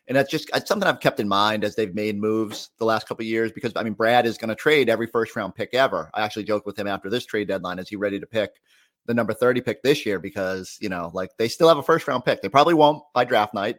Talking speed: 290 wpm